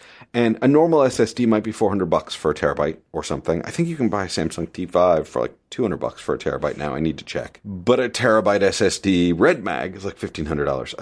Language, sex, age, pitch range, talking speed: English, male, 40-59, 80-125 Hz, 230 wpm